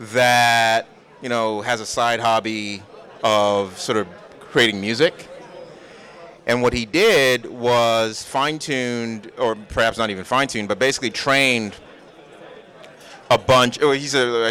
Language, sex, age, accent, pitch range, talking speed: English, male, 30-49, American, 105-130 Hz, 130 wpm